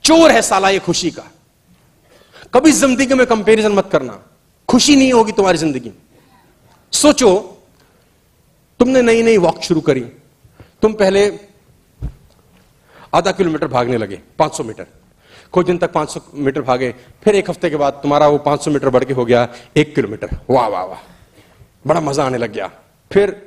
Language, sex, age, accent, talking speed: Hindi, male, 40-59, native, 160 wpm